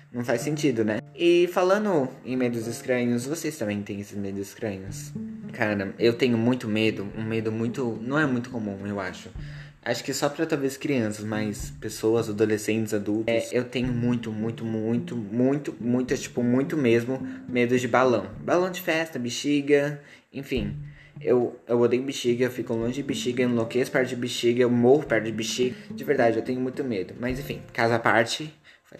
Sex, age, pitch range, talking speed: male, 20-39, 115-145 Hz, 180 wpm